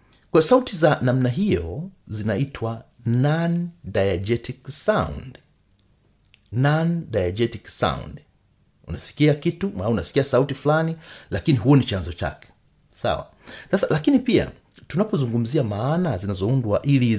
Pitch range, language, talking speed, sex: 100-150 Hz, Swahili, 105 wpm, male